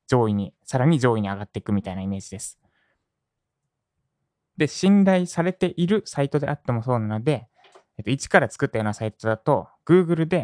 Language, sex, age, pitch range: Japanese, male, 20-39, 110-155 Hz